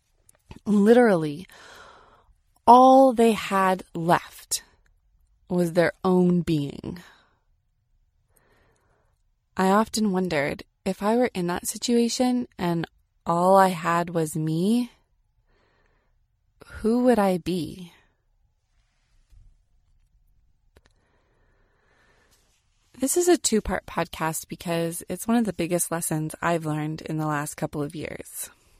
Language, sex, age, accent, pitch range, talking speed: English, female, 20-39, American, 150-210 Hz, 100 wpm